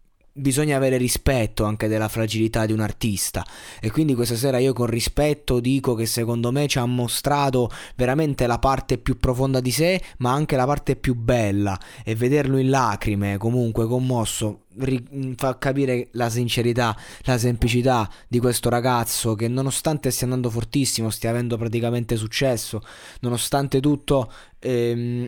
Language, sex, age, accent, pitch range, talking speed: Italian, male, 20-39, native, 120-140 Hz, 150 wpm